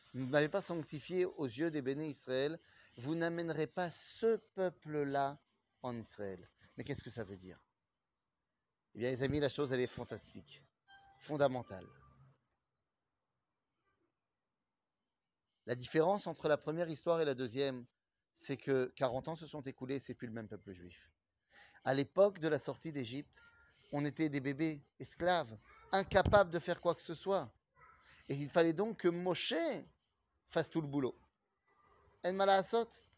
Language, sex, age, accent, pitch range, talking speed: French, male, 30-49, French, 130-175 Hz, 155 wpm